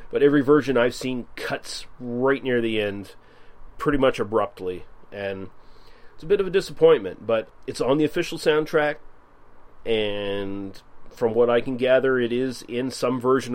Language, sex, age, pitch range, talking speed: English, male, 30-49, 105-135 Hz, 165 wpm